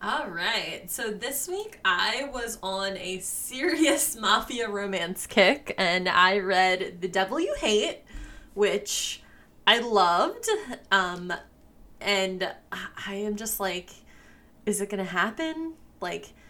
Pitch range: 185-255 Hz